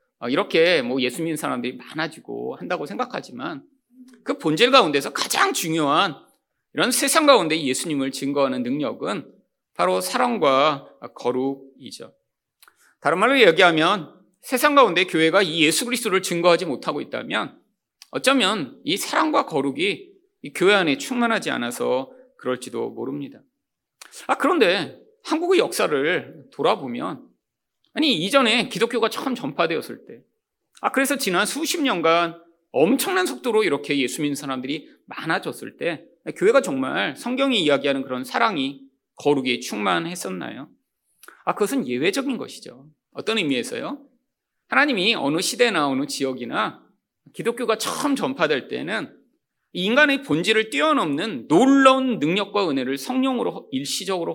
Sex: male